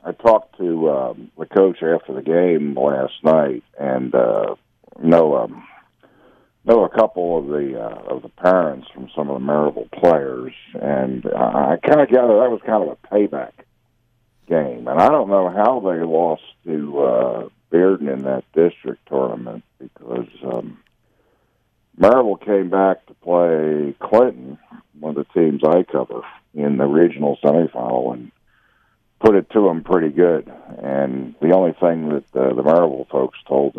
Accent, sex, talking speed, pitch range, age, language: American, male, 165 wpm, 70-90 Hz, 60-79, English